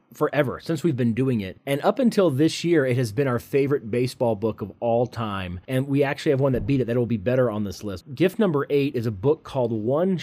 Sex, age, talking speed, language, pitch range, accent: male, 30-49, 250 wpm, English, 125-165 Hz, American